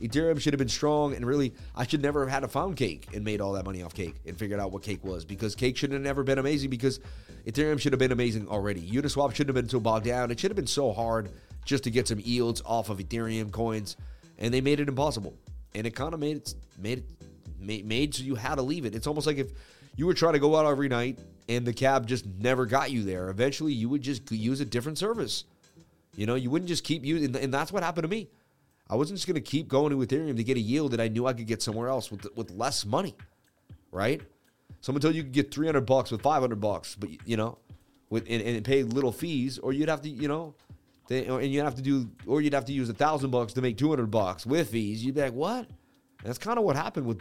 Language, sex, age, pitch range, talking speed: English, male, 30-49, 115-145 Hz, 270 wpm